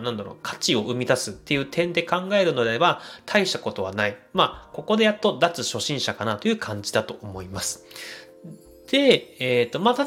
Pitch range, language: 110-175 Hz, Japanese